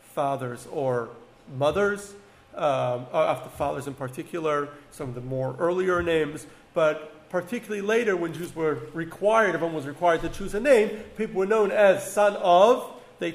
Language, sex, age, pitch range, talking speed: English, male, 40-59, 140-205 Hz, 155 wpm